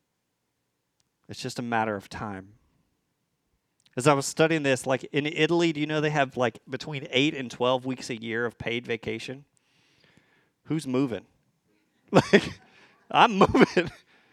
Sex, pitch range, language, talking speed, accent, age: male, 125-155 Hz, English, 145 wpm, American, 30-49